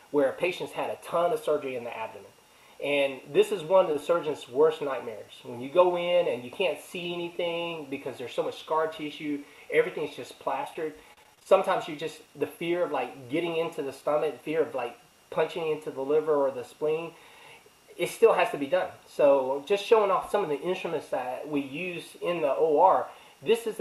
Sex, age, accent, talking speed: male, 30-49, American, 200 wpm